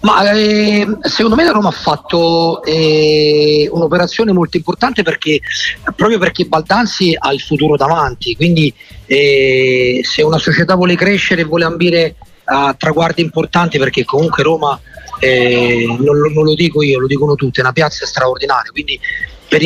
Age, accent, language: 40-59, native, Italian